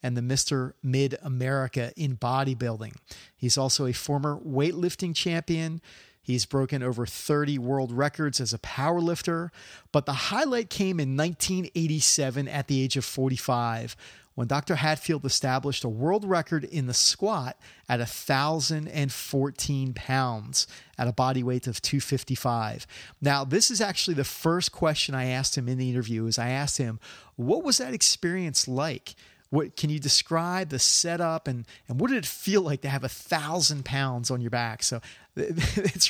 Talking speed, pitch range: 160 wpm, 125-160 Hz